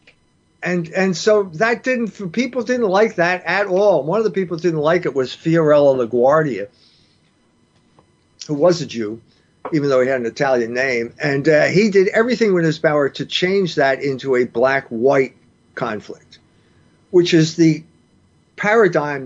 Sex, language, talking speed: male, English, 160 wpm